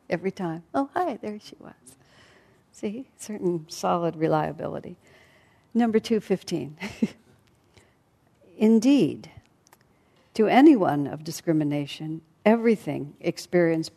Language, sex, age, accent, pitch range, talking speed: English, female, 60-79, American, 160-200 Hz, 85 wpm